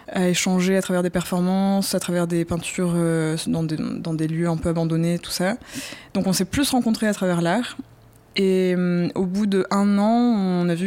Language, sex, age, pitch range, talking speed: English, female, 20-39, 170-195 Hz, 210 wpm